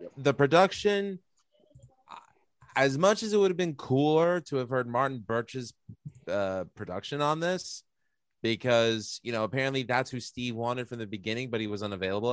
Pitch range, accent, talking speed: 105-130 Hz, American, 165 wpm